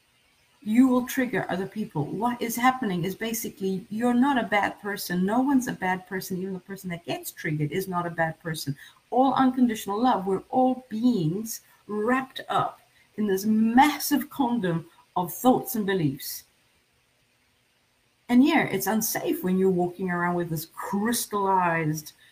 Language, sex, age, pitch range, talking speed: English, female, 50-69, 185-250 Hz, 155 wpm